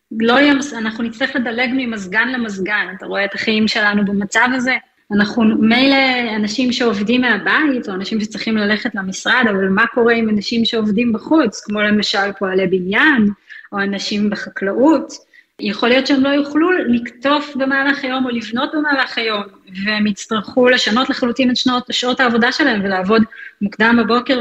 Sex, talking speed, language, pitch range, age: female, 150 wpm, Hebrew, 210-260 Hz, 20-39